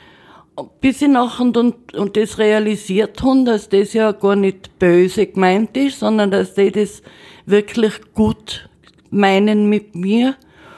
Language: German